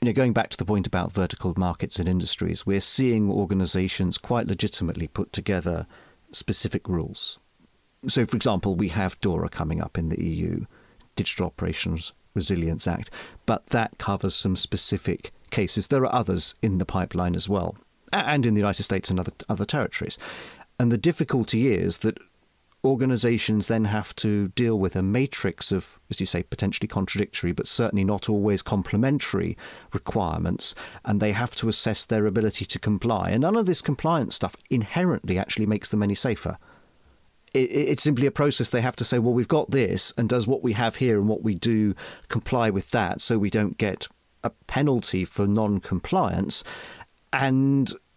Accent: British